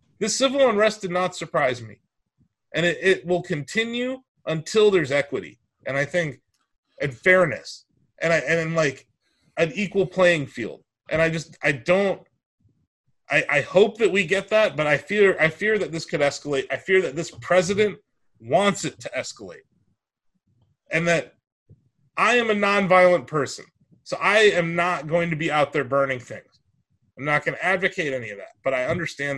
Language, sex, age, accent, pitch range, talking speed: English, male, 30-49, American, 135-210 Hz, 180 wpm